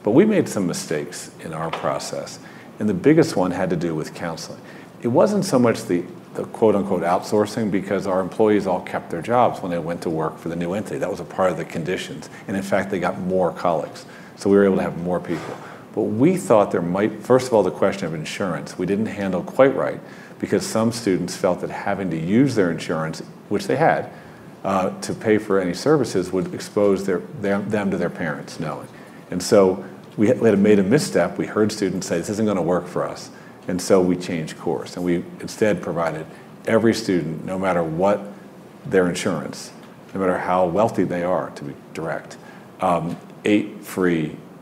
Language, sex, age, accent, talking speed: English, male, 40-59, American, 205 wpm